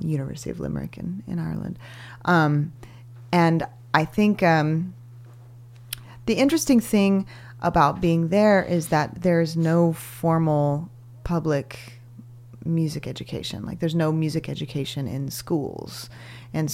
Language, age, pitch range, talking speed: English, 30-49, 120-155 Hz, 120 wpm